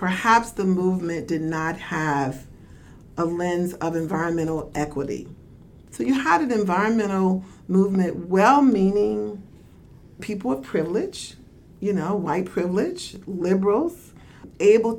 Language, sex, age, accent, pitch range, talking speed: English, female, 40-59, American, 170-215 Hz, 110 wpm